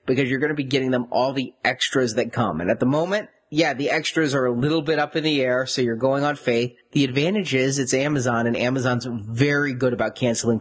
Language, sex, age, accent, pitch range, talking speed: English, male, 30-49, American, 125-160 Hz, 245 wpm